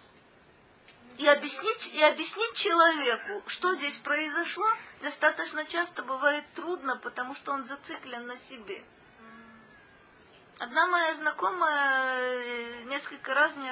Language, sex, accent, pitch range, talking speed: Russian, female, native, 240-315 Hz, 100 wpm